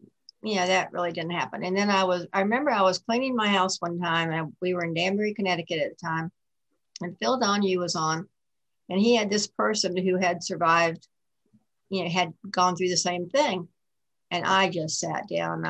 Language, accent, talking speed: English, American, 205 wpm